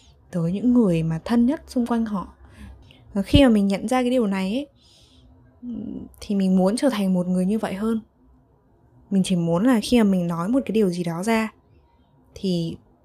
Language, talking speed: Vietnamese, 200 wpm